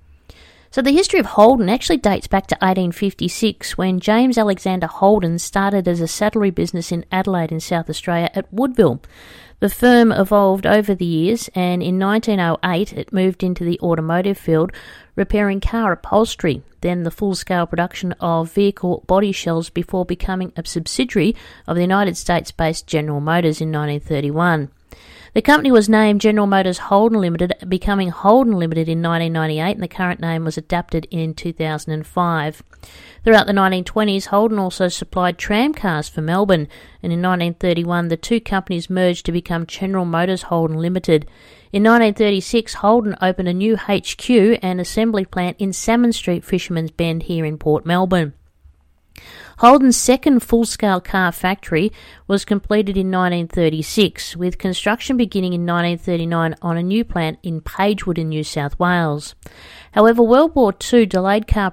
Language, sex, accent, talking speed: English, female, Australian, 155 wpm